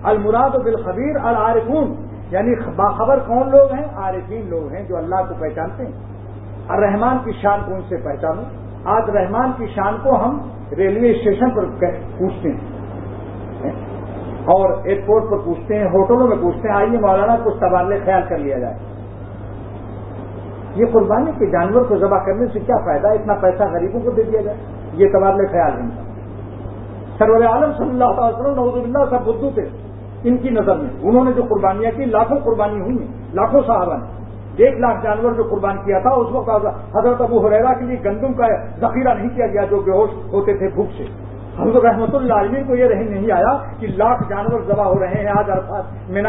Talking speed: 150 wpm